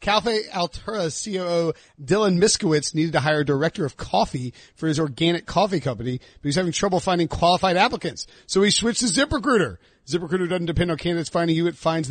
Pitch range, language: 150-185 Hz, English